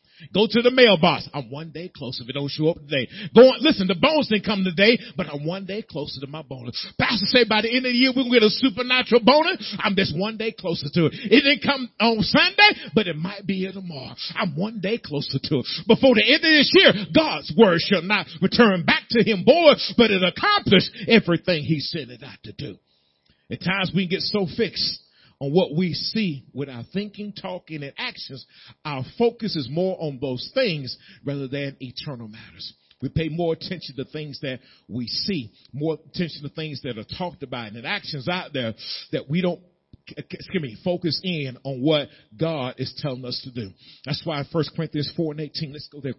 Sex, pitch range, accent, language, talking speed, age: male, 130-200 Hz, American, English, 220 wpm, 40-59